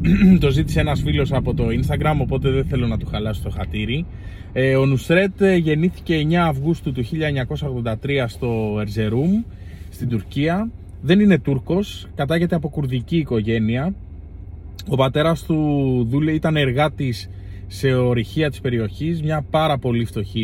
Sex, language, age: male, Greek, 20-39